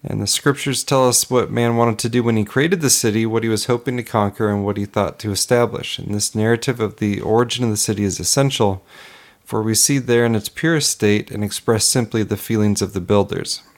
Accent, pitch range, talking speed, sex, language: American, 100-120 Hz, 235 wpm, male, English